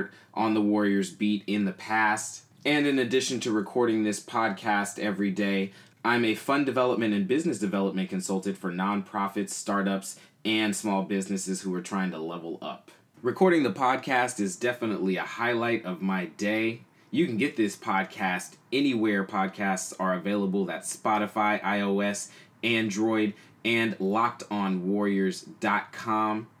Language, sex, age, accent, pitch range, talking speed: English, male, 20-39, American, 95-110 Hz, 140 wpm